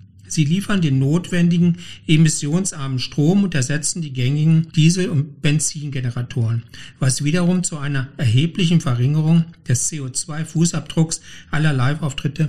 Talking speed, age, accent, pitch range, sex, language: 110 wpm, 60-79, German, 130-165 Hz, male, German